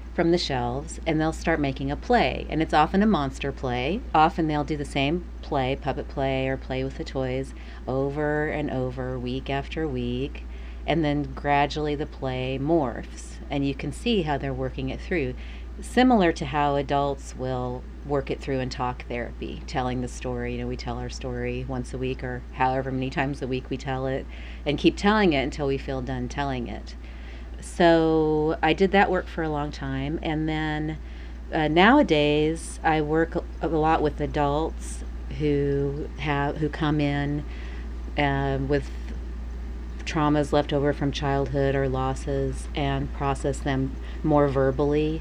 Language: English